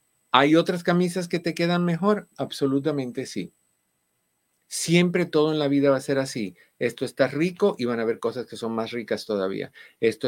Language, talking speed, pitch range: Spanish, 185 wpm, 110-140 Hz